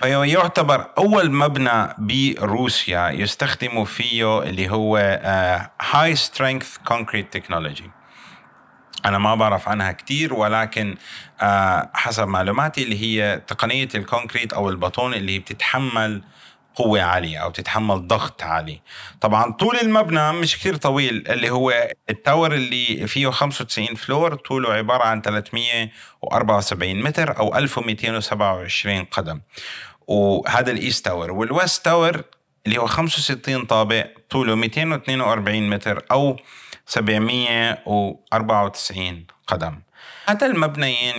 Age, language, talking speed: 30-49, Arabic, 105 wpm